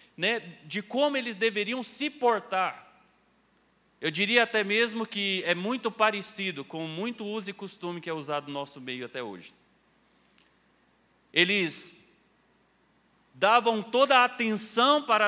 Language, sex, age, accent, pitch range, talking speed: Portuguese, male, 40-59, Brazilian, 175-220 Hz, 130 wpm